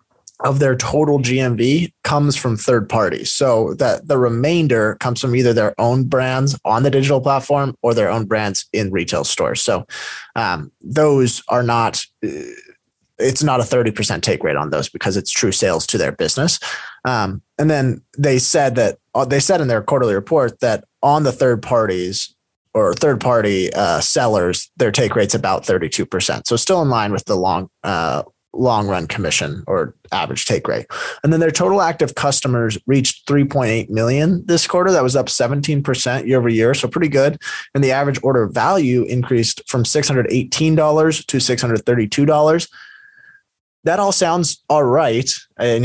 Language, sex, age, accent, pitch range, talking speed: English, male, 20-39, American, 120-145 Hz, 170 wpm